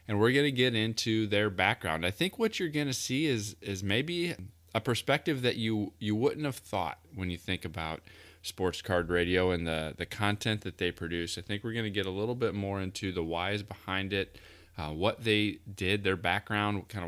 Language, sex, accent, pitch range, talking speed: English, male, American, 85-110 Hz, 220 wpm